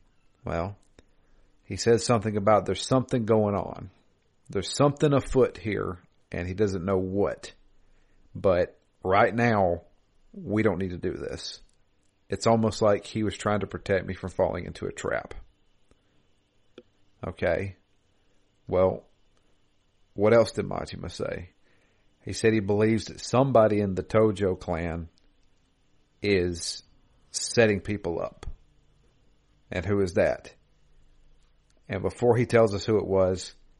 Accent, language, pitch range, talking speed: American, English, 95-110 Hz, 130 wpm